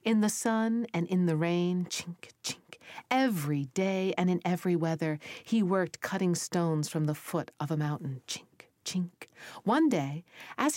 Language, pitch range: English, 155-220 Hz